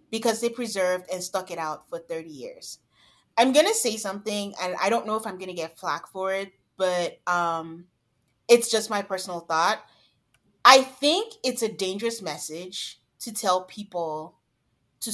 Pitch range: 175-215 Hz